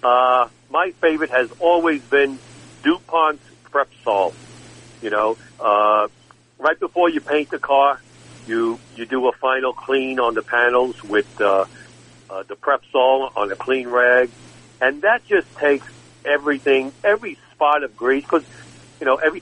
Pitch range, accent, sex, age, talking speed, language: 120-150 Hz, American, male, 60-79, 150 wpm, English